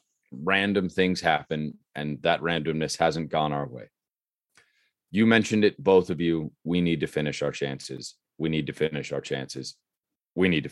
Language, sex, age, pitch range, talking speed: English, male, 30-49, 80-95 Hz, 175 wpm